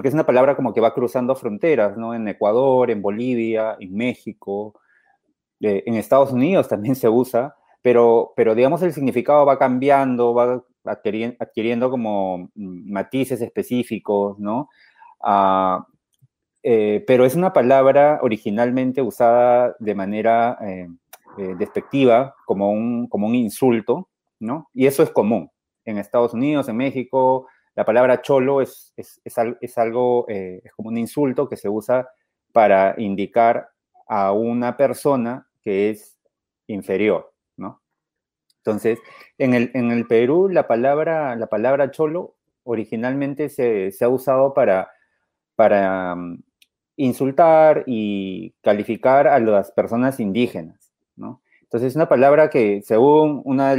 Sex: male